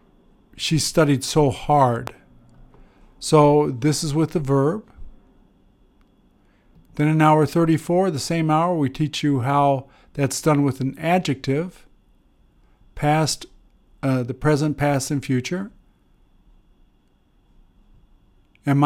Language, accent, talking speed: English, American, 110 wpm